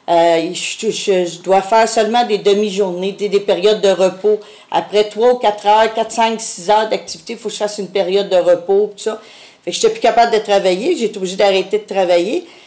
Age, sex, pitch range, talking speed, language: 50-69, female, 175-215 Hz, 215 wpm, French